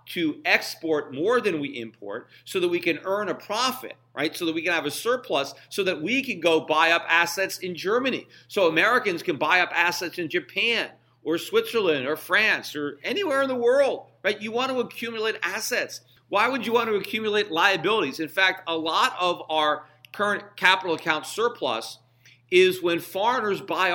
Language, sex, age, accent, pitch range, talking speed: English, male, 50-69, American, 160-220 Hz, 190 wpm